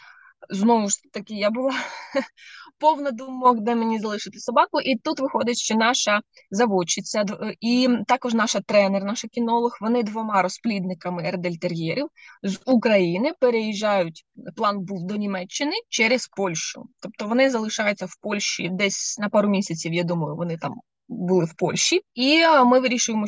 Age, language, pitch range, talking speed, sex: 20-39, Ukrainian, 195-250 Hz, 140 wpm, female